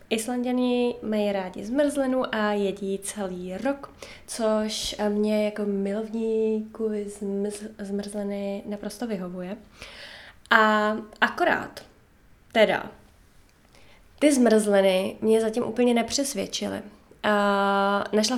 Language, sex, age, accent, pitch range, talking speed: Czech, female, 20-39, native, 200-225 Hz, 80 wpm